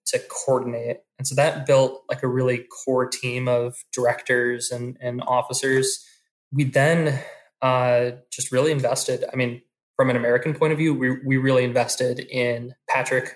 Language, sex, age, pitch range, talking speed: English, male, 20-39, 120-135 Hz, 160 wpm